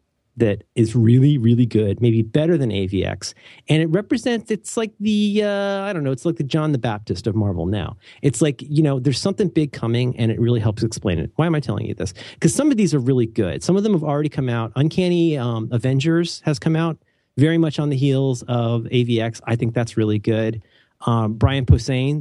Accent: American